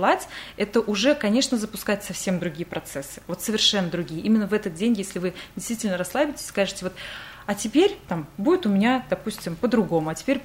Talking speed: 170 wpm